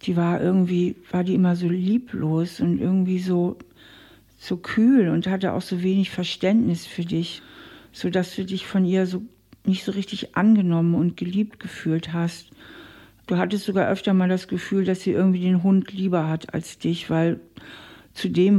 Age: 60-79